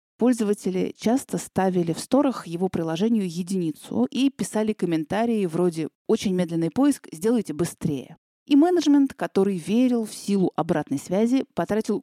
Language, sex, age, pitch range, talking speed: Russian, female, 30-49, 170-230 Hz, 130 wpm